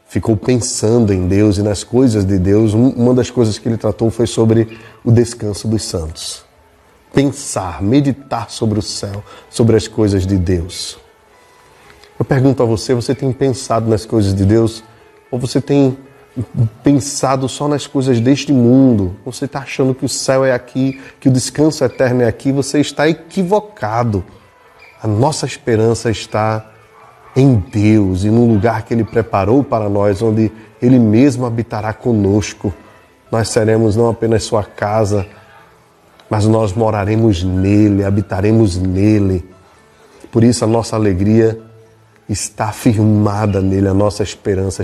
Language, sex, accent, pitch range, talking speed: Portuguese, male, Brazilian, 100-120 Hz, 145 wpm